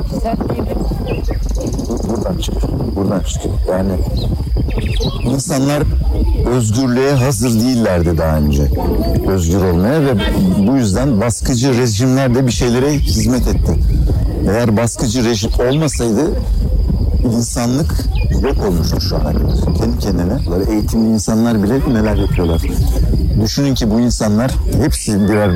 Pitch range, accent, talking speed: 90-120 Hz, native, 110 wpm